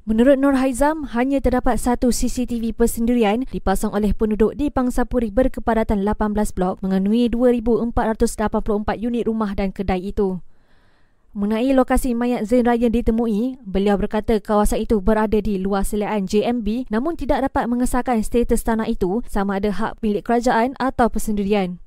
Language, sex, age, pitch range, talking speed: Malay, female, 20-39, 215-250 Hz, 145 wpm